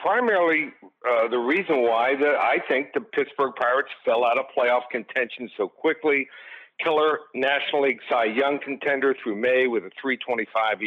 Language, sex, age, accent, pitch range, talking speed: English, male, 60-79, American, 125-155 Hz, 160 wpm